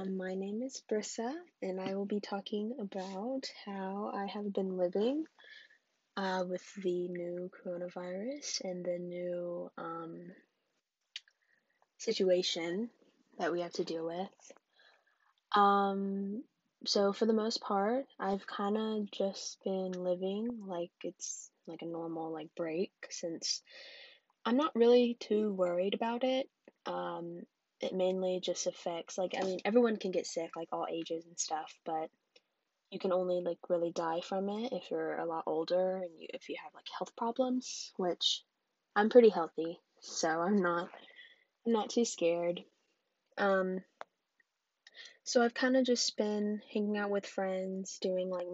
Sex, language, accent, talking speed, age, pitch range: female, English, American, 145 wpm, 10-29, 175-225 Hz